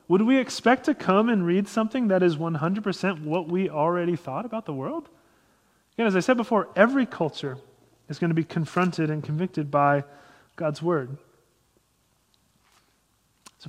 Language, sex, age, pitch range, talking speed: English, male, 30-49, 150-200 Hz, 160 wpm